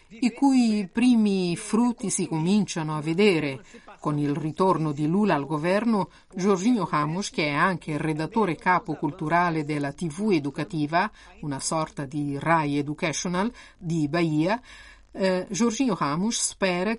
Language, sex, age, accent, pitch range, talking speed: Italian, female, 50-69, native, 155-195 Hz, 135 wpm